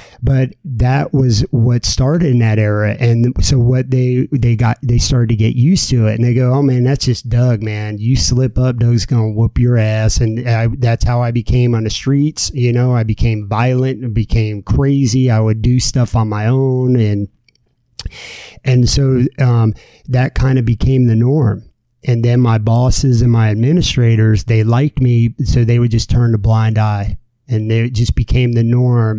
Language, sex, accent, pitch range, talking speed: English, male, American, 115-130 Hz, 195 wpm